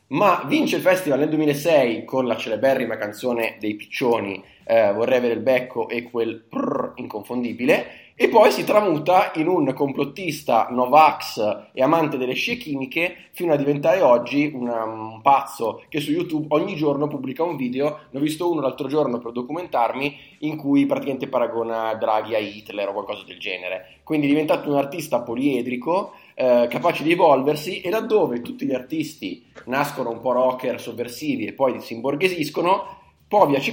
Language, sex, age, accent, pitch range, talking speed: Italian, male, 30-49, native, 120-150 Hz, 165 wpm